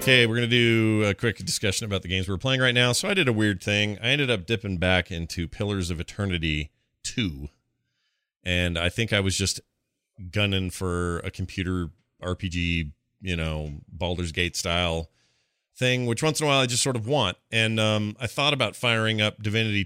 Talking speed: 200 wpm